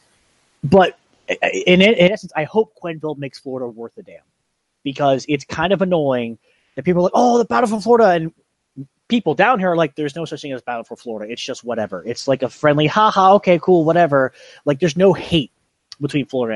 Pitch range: 120-160 Hz